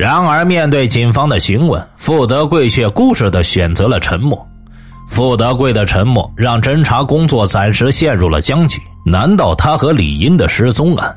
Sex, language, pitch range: male, Chinese, 100-140 Hz